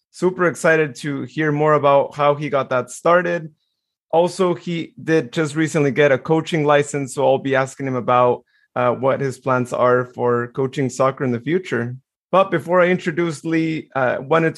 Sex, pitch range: male, 130-155 Hz